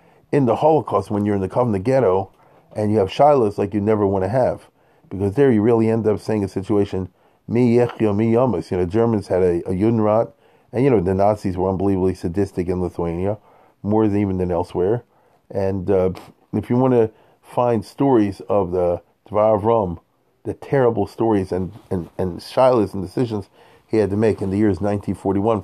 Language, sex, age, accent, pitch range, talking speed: English, male, 40-59, American, 95-115 Hz, 185 wpm